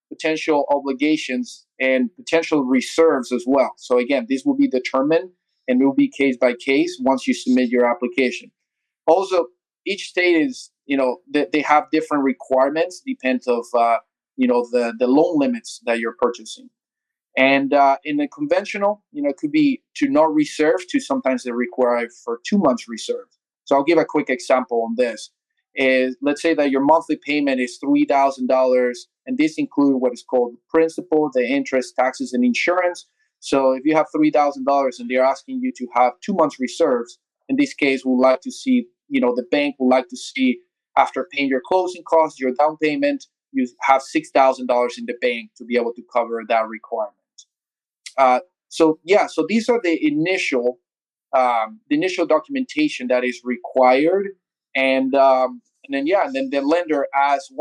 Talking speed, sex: 180 wpm, male